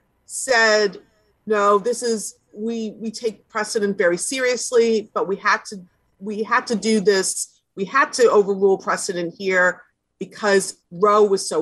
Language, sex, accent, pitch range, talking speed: English, female, American, 185-230 Hz, 140 wpm